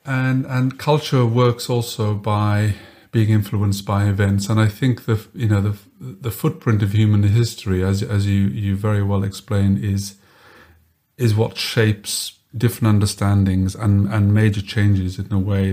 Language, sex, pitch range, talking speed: Dutch, male, 105-130 Hz, 160 wpm